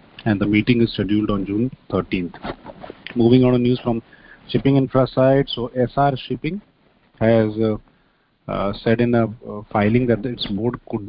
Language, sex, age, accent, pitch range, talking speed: English, male, 30-49, Indian, 100-120 Hz, 160 wpm